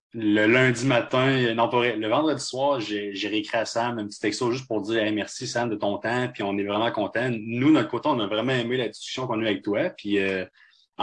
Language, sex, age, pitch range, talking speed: French, male, 20-39, 105-130 Hz, 255 wpm